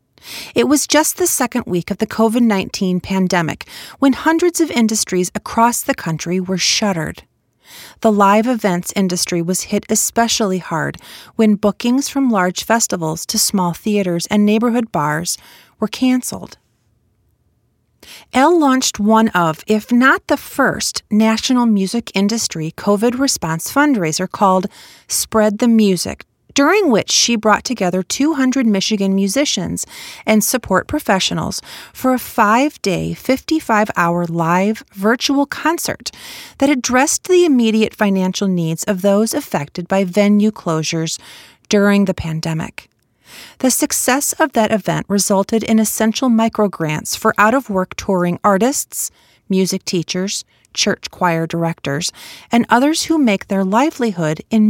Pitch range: 180-245 Hz